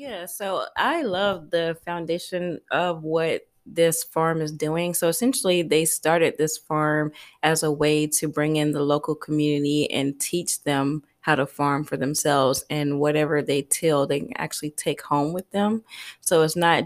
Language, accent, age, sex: English, American, 20-39, female